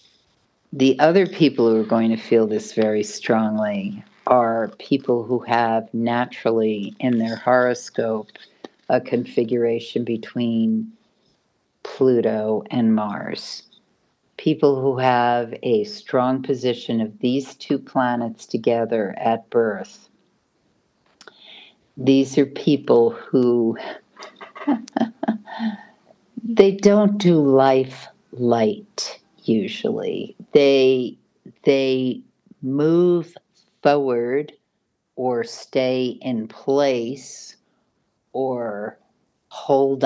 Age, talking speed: 60-79, 85 wpm